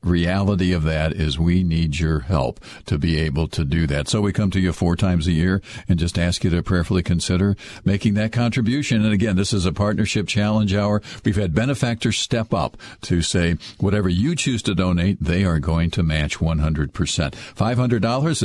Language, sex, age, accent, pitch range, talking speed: English, male, 50-69, American, 85-110 Hz, 195 wpm